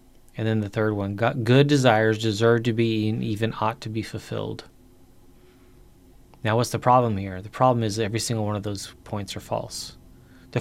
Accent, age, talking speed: American, 20-39, 185 wpm